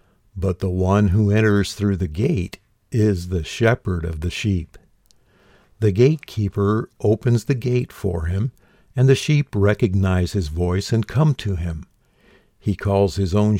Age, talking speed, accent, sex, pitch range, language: 60-79, 155 wpm, American, male, 95-110 Hz, English